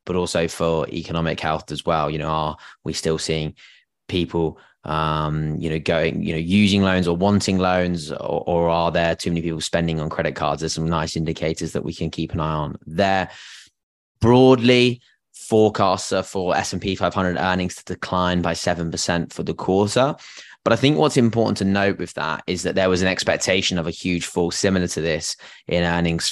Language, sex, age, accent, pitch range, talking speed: English, male, 20-39, British, 85-100 Hz, 195 wpm